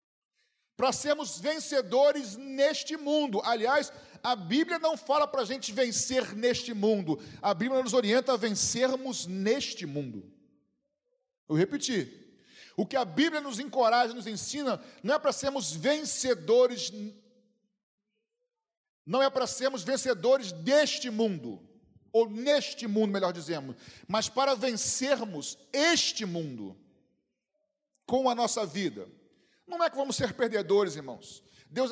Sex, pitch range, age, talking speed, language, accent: male, 200-270 Hz, 40-59, 130 wpm, Portuguese, Brazilian